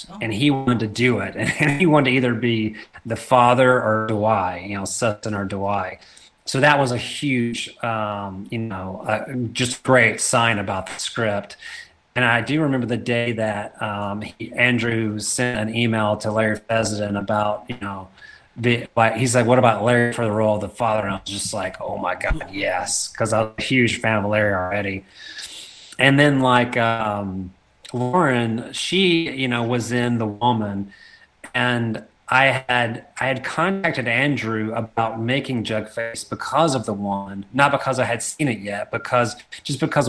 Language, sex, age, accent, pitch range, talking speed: English, male, 30-49, American, 105-125 Hz, 185 wpm